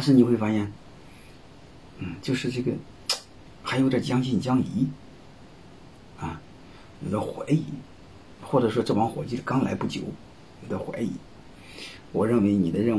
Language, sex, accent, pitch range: Chinese, male, native, 95-130 Hz